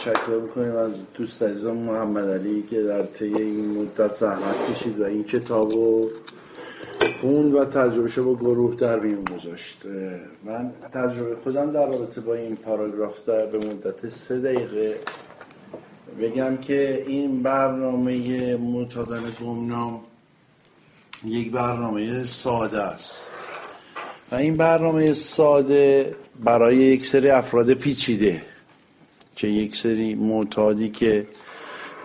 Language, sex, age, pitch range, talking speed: Persian, male, 50-69, 110-135 Hz, 115 wpm